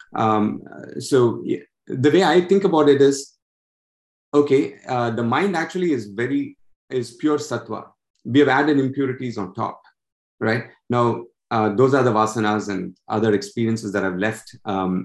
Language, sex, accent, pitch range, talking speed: English, male, Indian, 105-135 Hz, 155 wpm